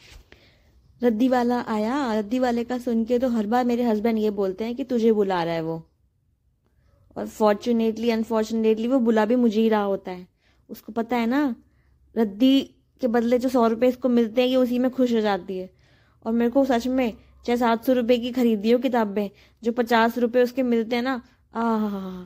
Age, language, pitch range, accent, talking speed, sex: 20-39, Hindi, 190-240 Hz, native, 140 wpm, female